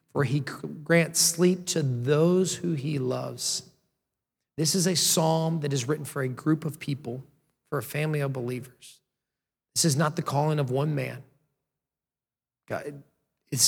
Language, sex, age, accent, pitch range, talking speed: English, male, 40-59, American, 130-155 Hz, 155 wpm